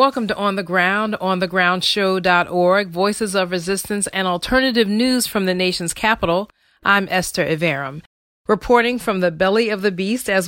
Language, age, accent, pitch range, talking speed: English, 40-59, American, 180-220 Hz, 160 wpm